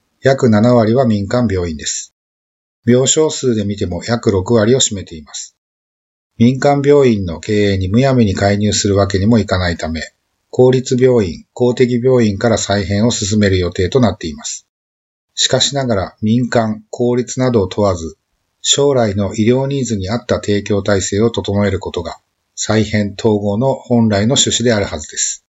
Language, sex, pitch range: Japanese, male, 95-120 Hz